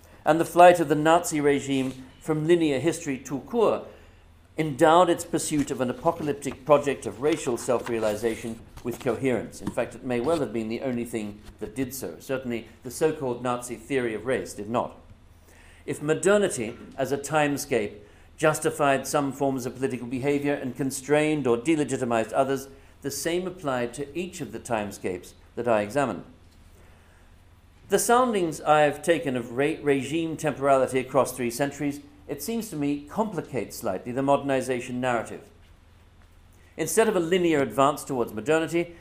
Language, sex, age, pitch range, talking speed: English, male, 50-69, 120-155 Hz, 155 wpm